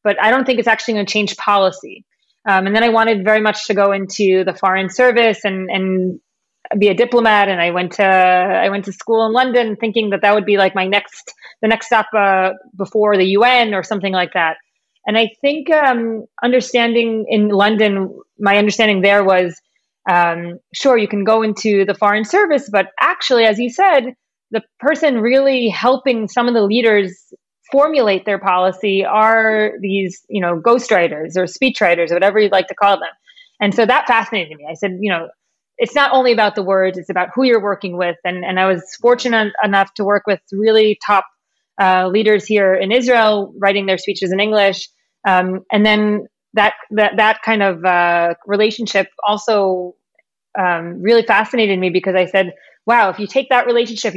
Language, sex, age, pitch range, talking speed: English, female, 30-49, 190-230 Hz, 190 wpm